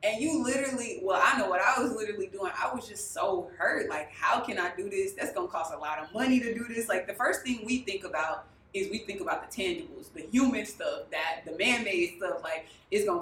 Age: 20-39